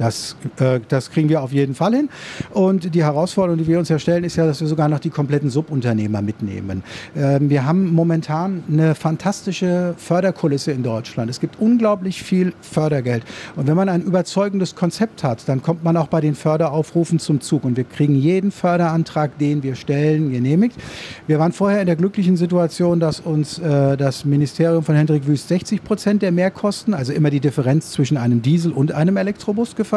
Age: 50-69